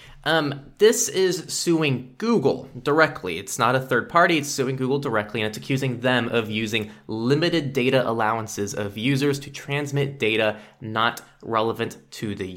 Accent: American